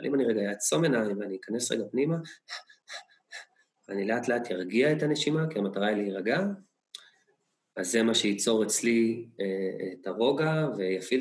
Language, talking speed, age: Hebrew, 150 wpm, 20-39